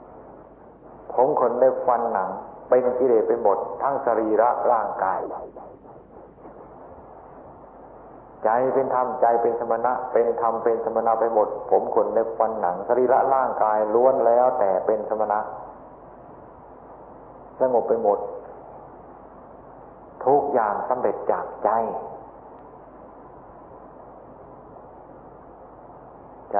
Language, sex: Thai, male